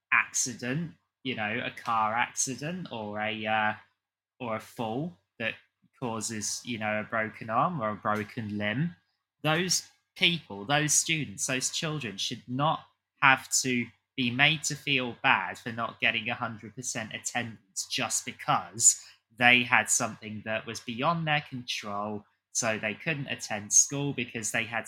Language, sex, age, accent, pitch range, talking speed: English, male, 20-39, British, 110-140 Hz, 145 wpm